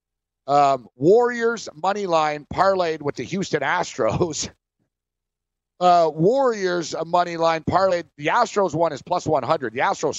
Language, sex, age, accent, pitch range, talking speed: English, male, 50-69, American, 135-175 Hz, 130 wpm